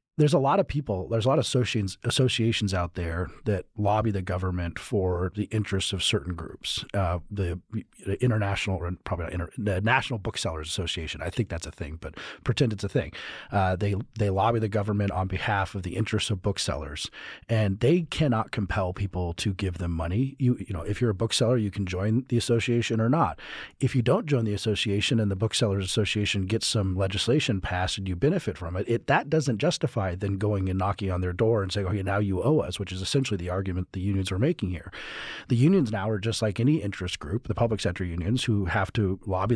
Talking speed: 220 wpm